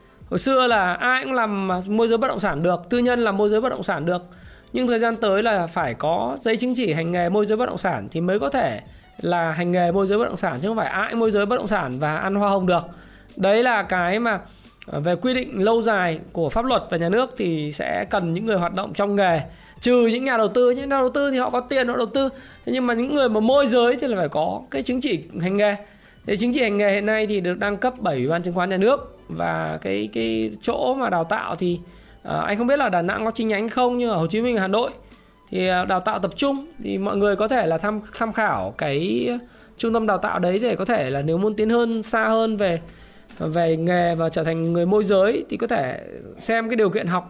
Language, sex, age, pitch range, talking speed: Vietnamese, male, 20-39, 180-230 Hz, 270 wpm